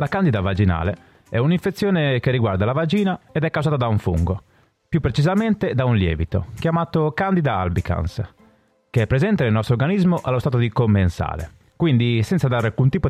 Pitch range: 100-150 Hz